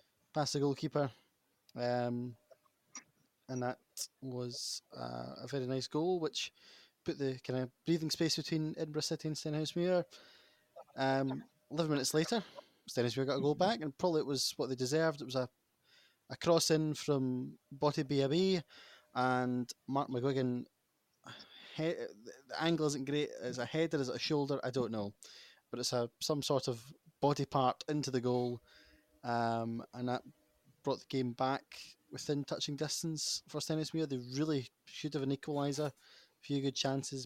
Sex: male